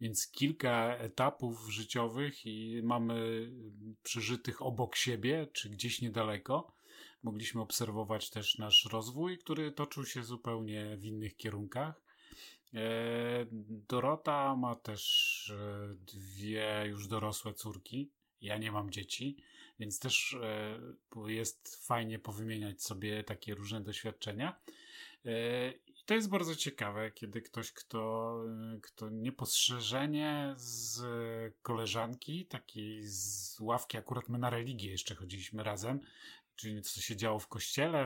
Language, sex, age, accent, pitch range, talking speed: Polish, male, 30-49, native, 110-135 Hz, 110 wpm